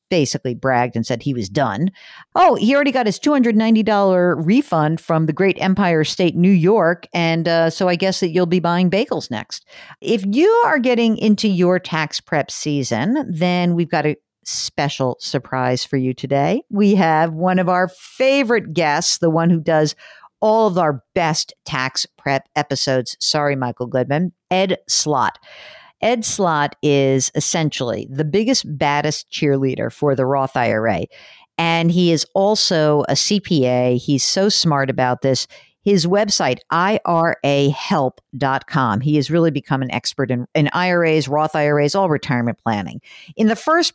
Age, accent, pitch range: 50-69, American, 140-195 Hz